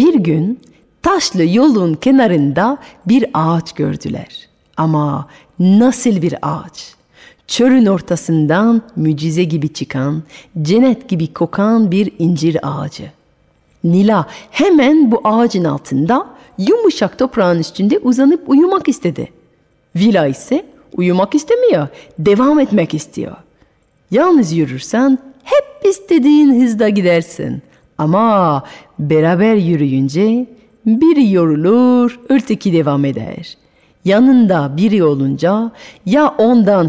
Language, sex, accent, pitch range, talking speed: Turkish, female, native, 165-250 Hz, 100 wpm